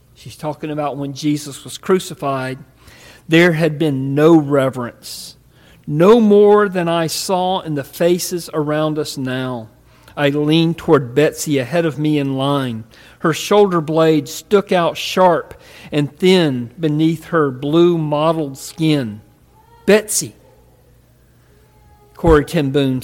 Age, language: 50-69, English